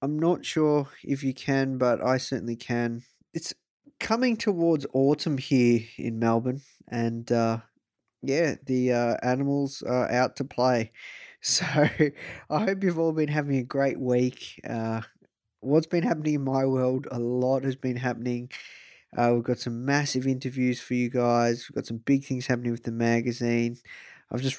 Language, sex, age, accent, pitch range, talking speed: English, male, 20-39, Australian, 120-145 Hz, 170 wpm